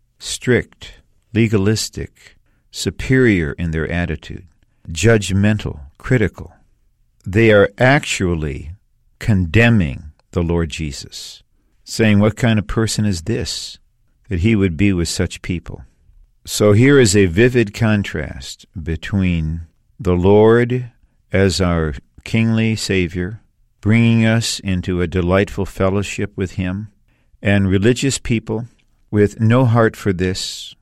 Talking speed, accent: 115 wpm, American